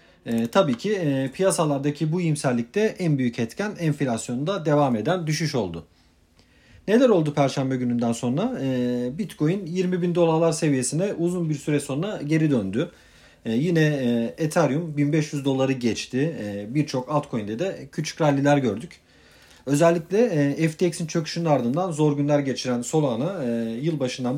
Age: 40-59